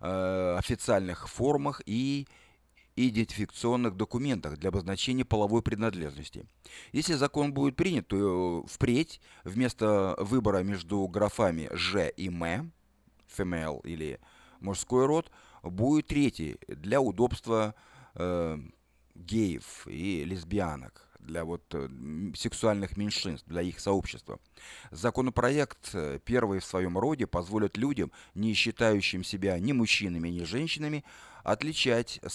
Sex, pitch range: male, 90-125 Hz